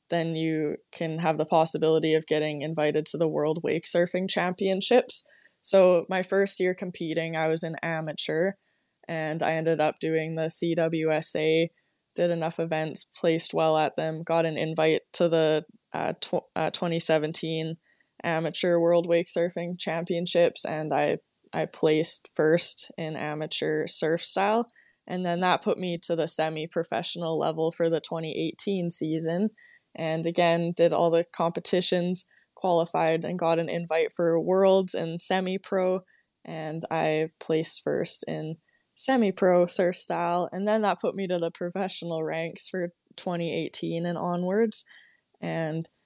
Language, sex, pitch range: English, female, 160-180 Hz